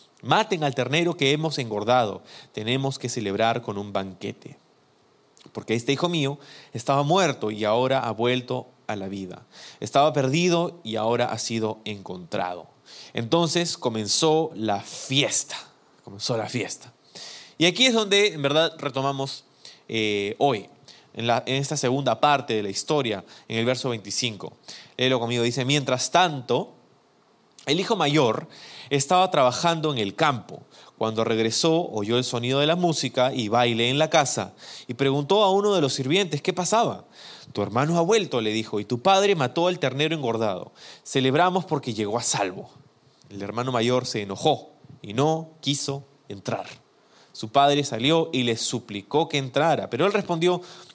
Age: 30-49